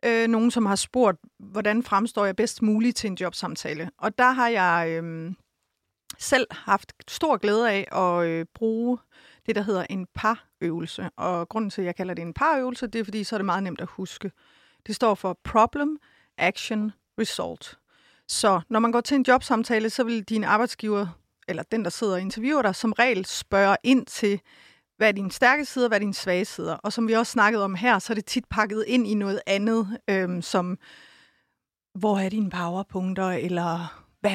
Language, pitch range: Danish, 190-240 Hz